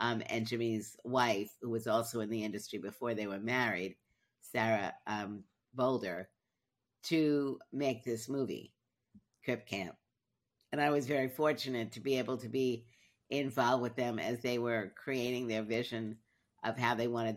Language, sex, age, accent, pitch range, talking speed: English, female, 50-69, American, 110-130 Hz, 160 wpm